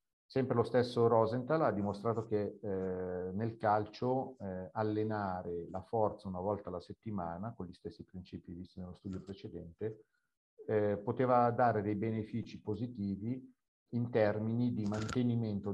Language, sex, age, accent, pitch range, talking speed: Italian, male, 50-69, native, 95-110 Hz, 135 wpm